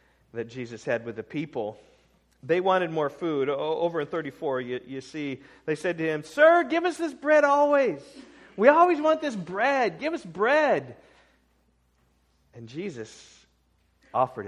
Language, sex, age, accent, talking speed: English, male, 40-59, American, 155 wpm